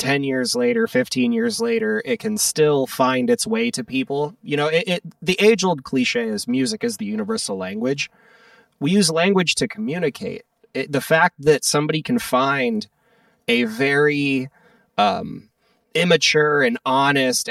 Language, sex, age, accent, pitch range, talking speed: English, male, 30-49, American, 150-230 Hz, 145 wpm